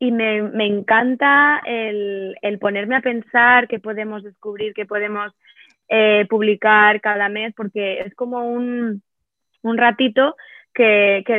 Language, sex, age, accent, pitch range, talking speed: Spanish, female, 20-39, Spanish, 205-250 Hz, 135 wpm